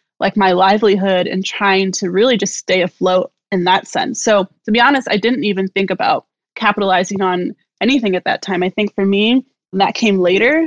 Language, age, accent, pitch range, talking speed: English, 20-39, American, 190-225 Hz, 195 wpm